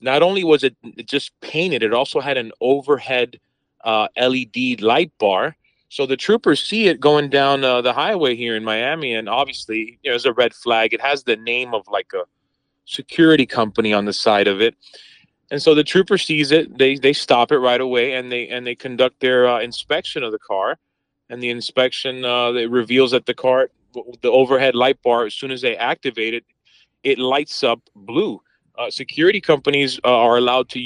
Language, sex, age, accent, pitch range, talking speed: English, male, 30-49, American, 115-140 Hz, 200 wpm